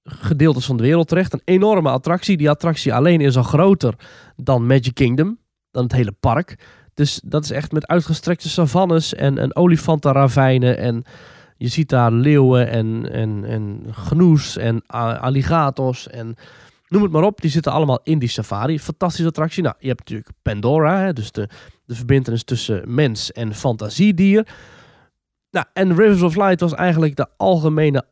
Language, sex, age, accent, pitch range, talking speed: Dutch, male, 20-39, Dutch, 120-160 Hz, 165 wpm